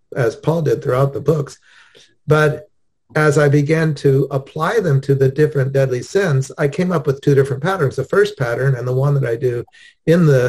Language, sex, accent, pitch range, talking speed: English, male, American, 135-165 Hz, 205 wpm